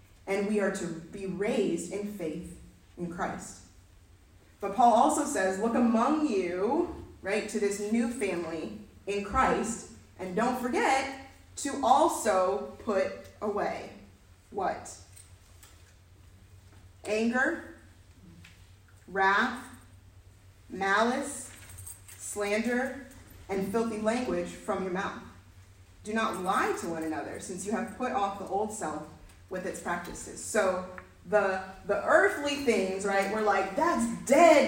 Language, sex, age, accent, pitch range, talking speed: English, female, 30-49, American, 180-260 Hz, 120 wpm